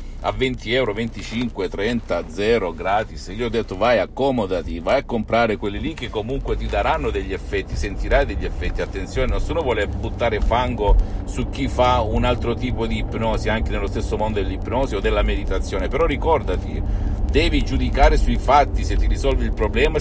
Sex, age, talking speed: male, 50-69, 175 wpm